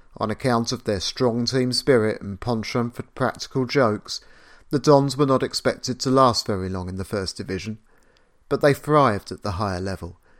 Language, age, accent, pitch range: English, 30-49, British, 100-125 Hz